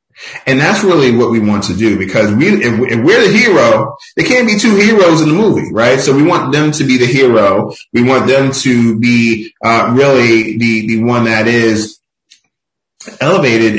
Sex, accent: male, American